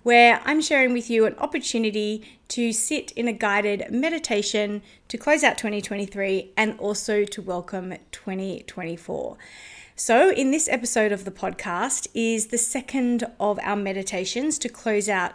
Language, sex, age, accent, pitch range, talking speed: English, female, 30-49, Australian, 205-240 Hz, 150 wpm